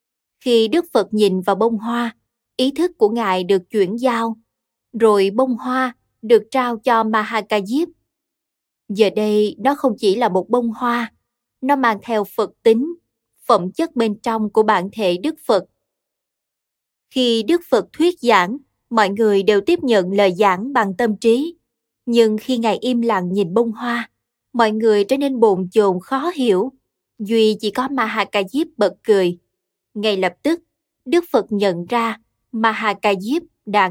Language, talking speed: Vietnamese, 165 wpm